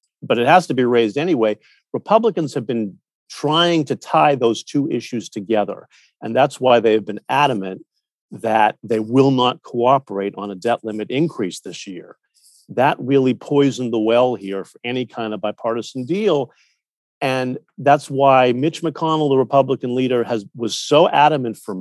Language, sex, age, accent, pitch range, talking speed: English, male, 50-69, American, 115-145 Hz, 170 wpm